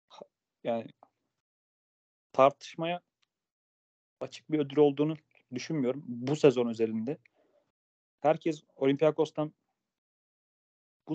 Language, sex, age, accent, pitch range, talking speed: Turkish, male, 30-49, native, 120-140 Hz, 70 wpm